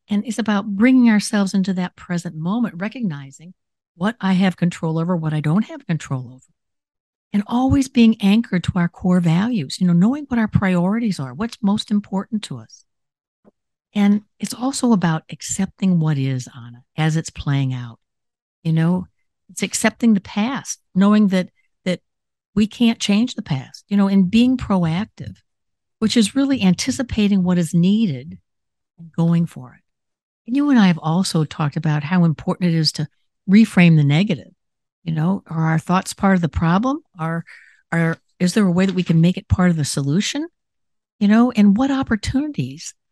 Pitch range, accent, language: 160-215 Hz, American, English